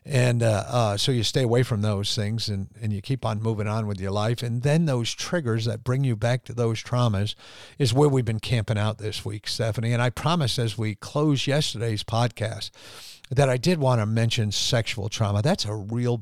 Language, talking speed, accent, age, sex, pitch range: English, 220 wpm, American, 50-69, male, 105-125 Hz